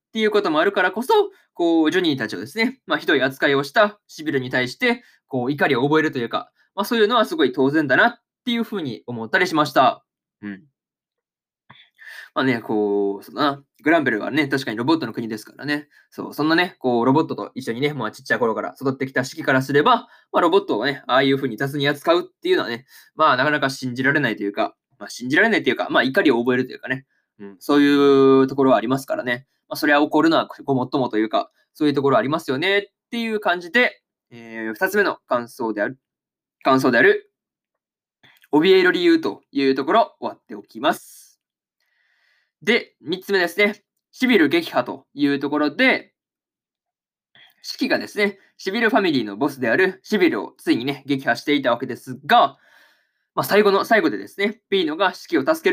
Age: 20-39